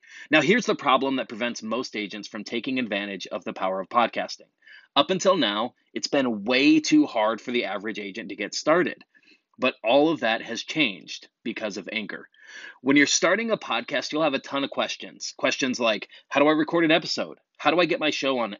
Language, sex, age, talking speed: English, male, 30-49, 215 wpm